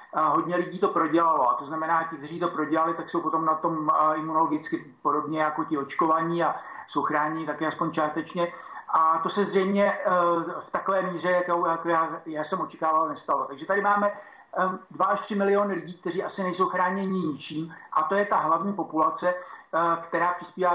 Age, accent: 60-79, native